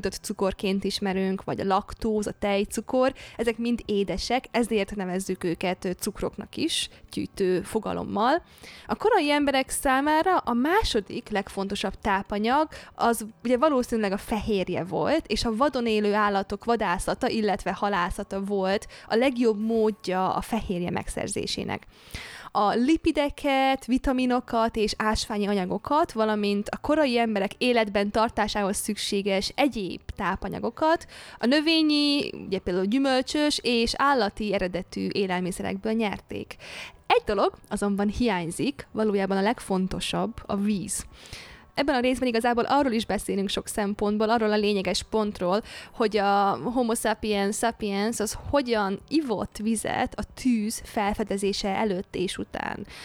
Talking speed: 120 wpm